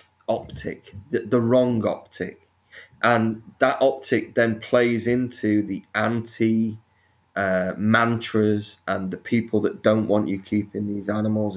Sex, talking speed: male, 125 wpm